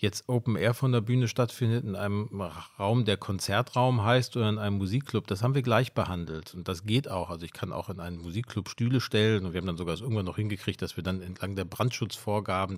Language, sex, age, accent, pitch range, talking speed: German, male, 40-59, German, 100-120 Hz, 225 wpm